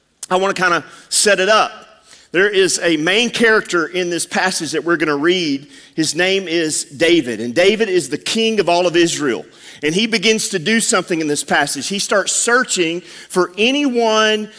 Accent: American